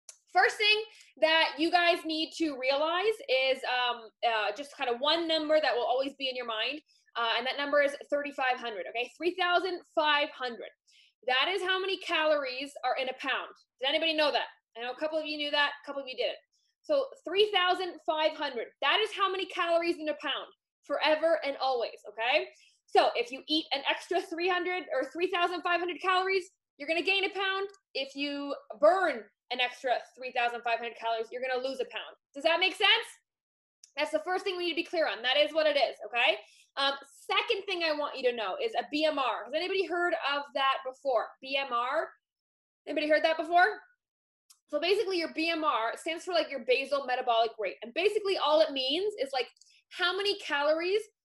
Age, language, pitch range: 20-39, English, 270-360 Hz